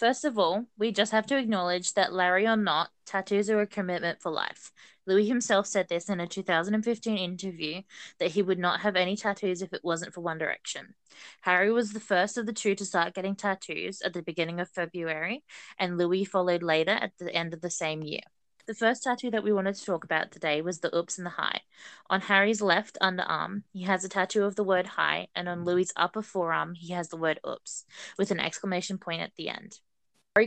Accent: Australian